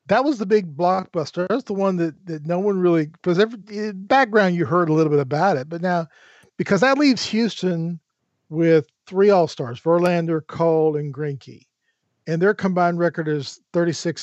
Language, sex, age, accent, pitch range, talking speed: English, male, 50-69, American, 150-190 Hz, 175 wpm